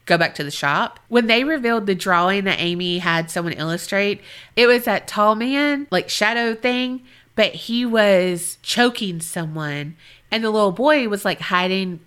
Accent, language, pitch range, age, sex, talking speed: American, English, 170-230 Hz, 30-49, female, 175 wpm